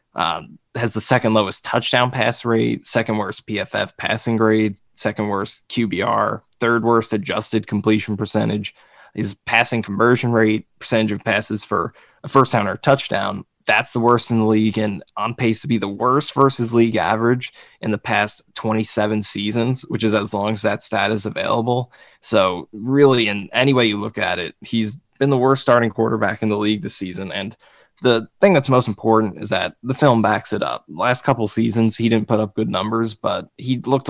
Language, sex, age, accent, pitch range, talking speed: English, male, 20-39, American, 105-120 Hz, 190 wpm